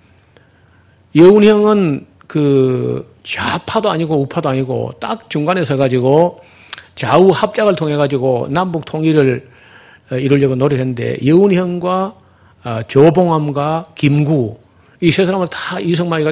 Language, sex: Korean, male